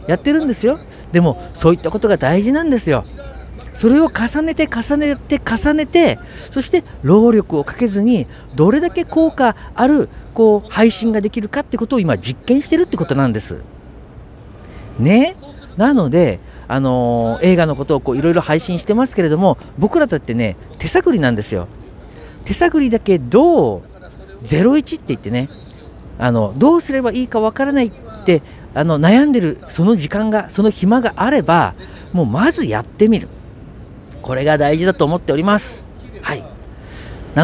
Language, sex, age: Japanese, male, 50-69